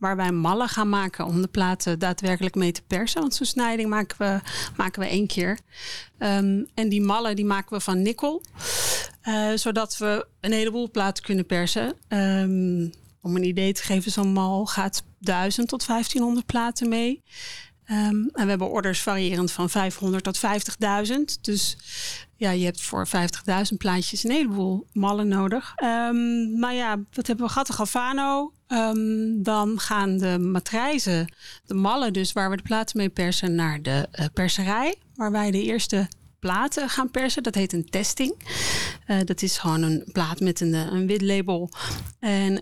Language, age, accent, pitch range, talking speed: Dutch, 40-59, Dutch, 190-230 Hz, 160 wpm